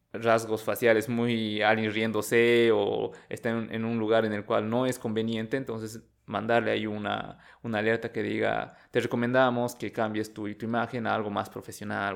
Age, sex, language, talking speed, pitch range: 20-39, male, Spanish, 180 wpm, 110-125 Hz